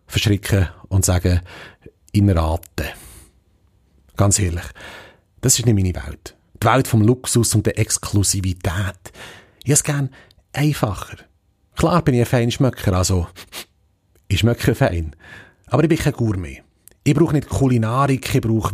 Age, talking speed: 30-49, 140 wpm